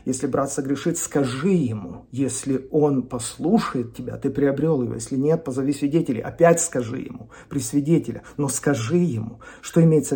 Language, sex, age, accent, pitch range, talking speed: Russian, male, 40-59, native, 125-155 Hz, 155 wpm